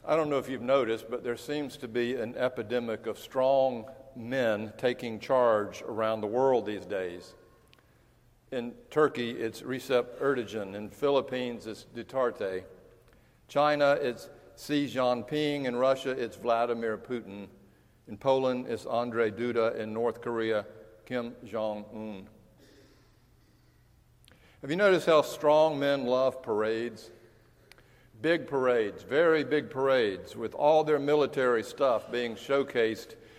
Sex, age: male, 60-79